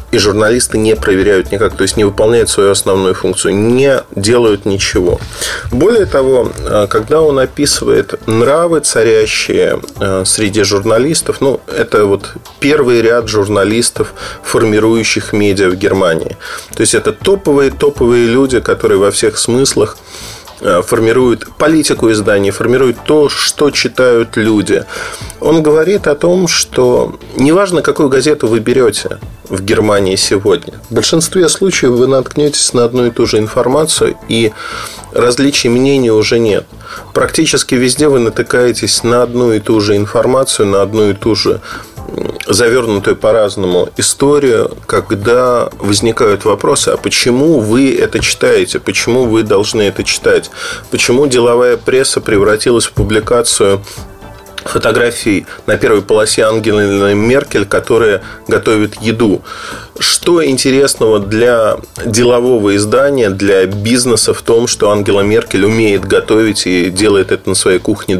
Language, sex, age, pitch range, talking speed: Russian, male, 30-49, 105-150 Hz, 130 wpm